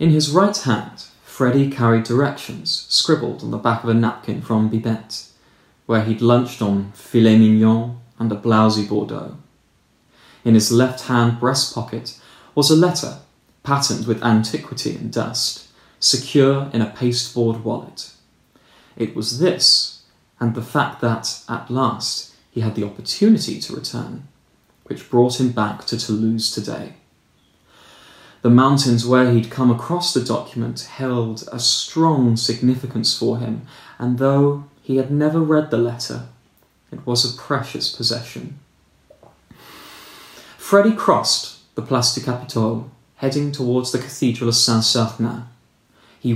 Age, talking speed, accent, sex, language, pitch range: 20-39, 140 wpm, British, male, English, 115-135 Hz